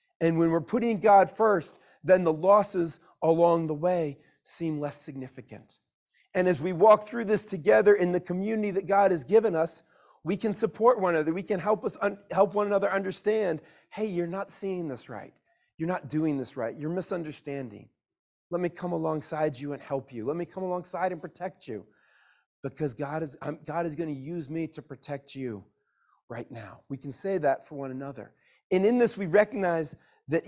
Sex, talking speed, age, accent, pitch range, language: male, 195 wpm, 40-59, American, 155-200 Hz, English